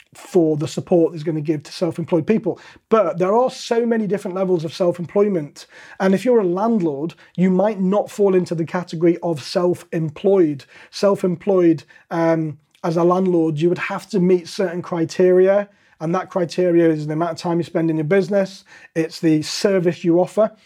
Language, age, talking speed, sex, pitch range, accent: English, 30-49, 185 wpm, male, 165-190 Hz, British